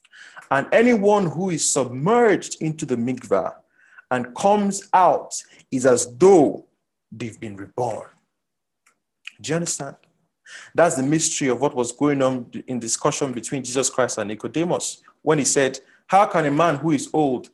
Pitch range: 130-180 Hz